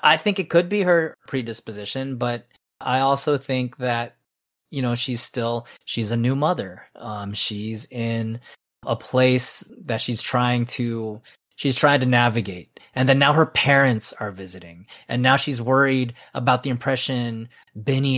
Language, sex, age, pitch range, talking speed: English, male, 20-39, 115-140 Hz, 160 wpm